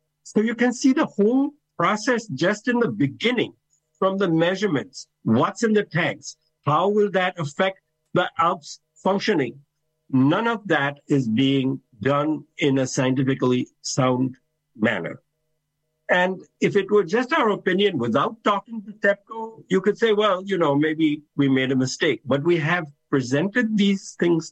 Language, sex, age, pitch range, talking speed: English, male, 60-79, 125-175 Hz, 155 wpm